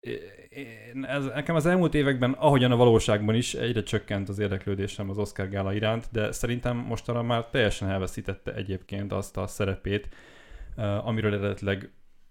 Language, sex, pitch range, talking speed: Hungarian, male, 100-120 Hz, 140 wpm